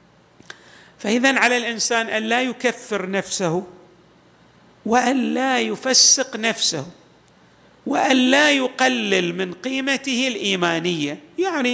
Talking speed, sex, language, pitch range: 90 wpm, male, Arabic, 195-260 Hz